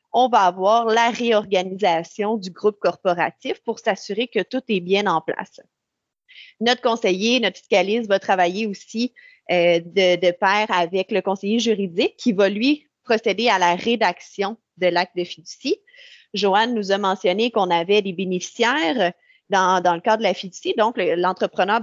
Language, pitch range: French, 185-235 Hz